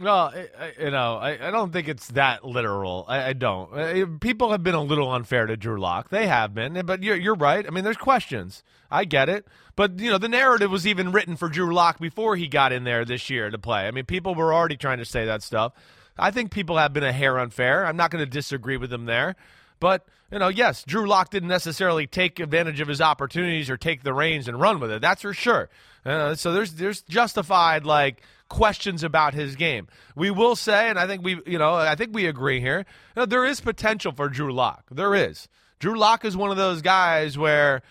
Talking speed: 235 wpm